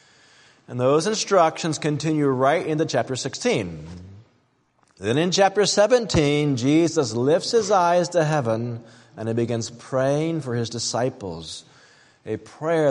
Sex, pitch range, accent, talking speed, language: male, 120-165 Hz, American, 125 wpm, English